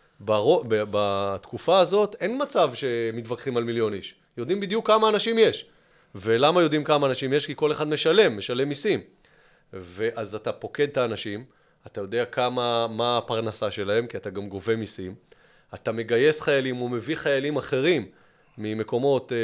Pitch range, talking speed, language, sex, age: 110-140 Hz, 145 wpm, Hebrew, male, 30-49